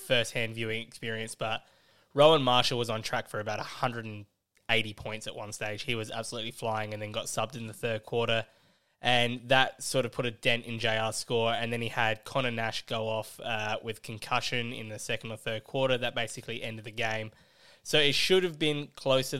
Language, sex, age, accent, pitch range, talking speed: English, male, 20-39, Australian, 110-125 Hz, 205 wpm